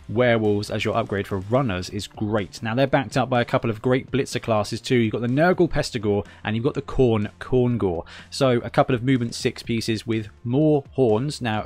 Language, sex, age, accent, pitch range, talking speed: English, male, 20-39, British, 105-125 Hz, 220 wpm